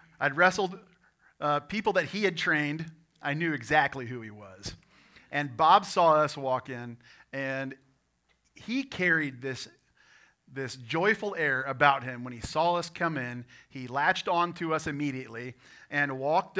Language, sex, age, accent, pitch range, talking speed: English, male, 40-59, American, 130-165 Hz, 155 wpm